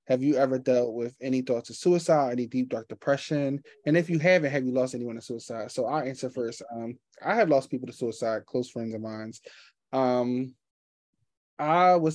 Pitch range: 120-140 Hz